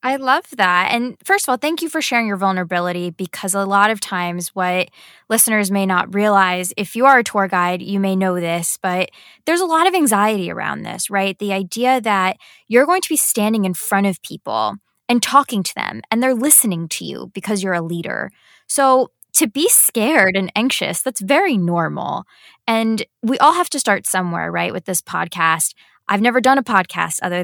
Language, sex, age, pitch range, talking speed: English, female, 20-39, 185-240 Hz, 205 wpm